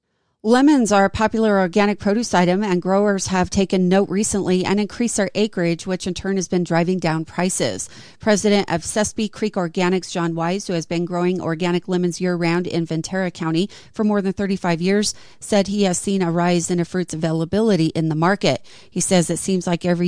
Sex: female